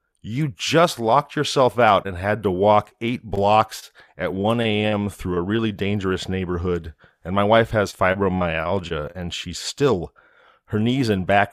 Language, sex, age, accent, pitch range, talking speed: English, male, 40-59, American, 90-105 Hz, 155 wpm